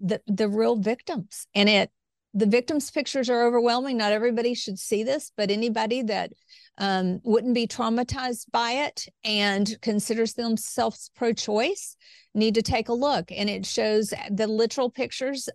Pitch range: 205-245 Hz